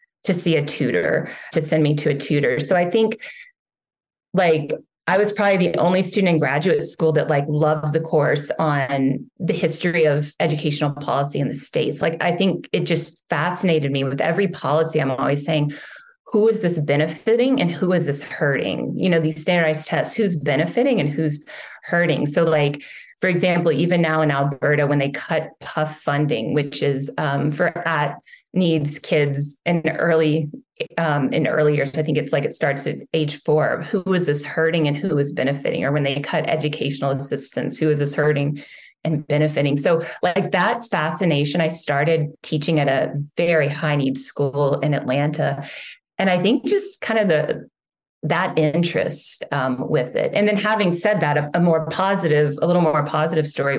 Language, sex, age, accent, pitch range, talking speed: English, female, 20-39, American, 145-175 Hz, 185 wpm